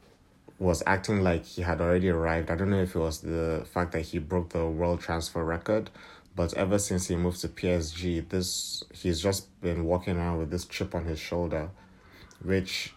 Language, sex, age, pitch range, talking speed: English, male, 30-49, 85-95 Hz, 195 wpm